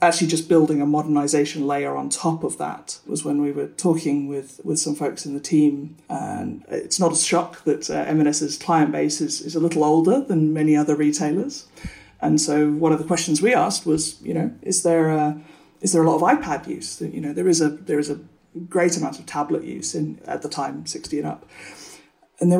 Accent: British